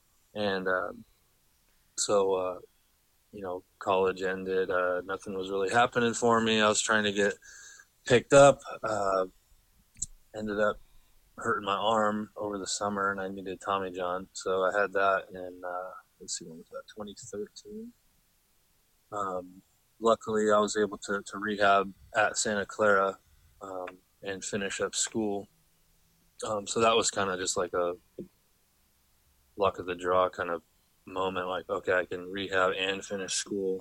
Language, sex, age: English, male, 20-39